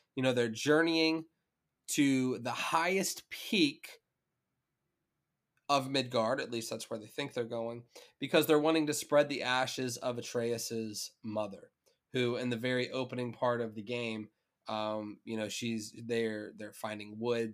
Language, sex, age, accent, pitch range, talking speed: English, male, 20-39, American, 115-130 Hz, 155 wpm